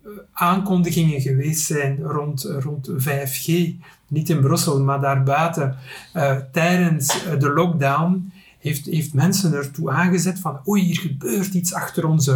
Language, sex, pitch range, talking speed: Dutch, male, 145-190 Hz, 130 wpm